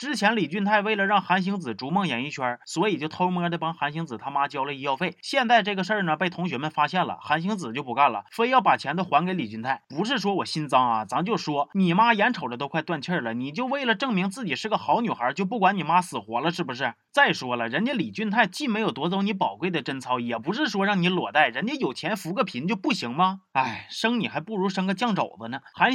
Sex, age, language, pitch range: male, 30-49, Chinese, 160-220 Hz